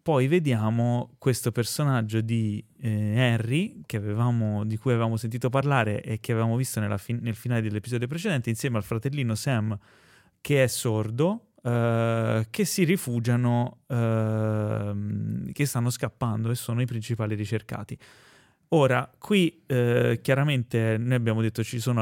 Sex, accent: male, native